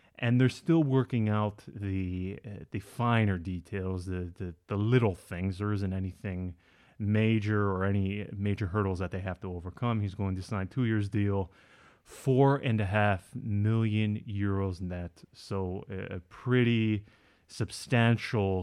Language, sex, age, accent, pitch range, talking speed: English, male, 30-49, American, 95-115 Hz, 155 wpm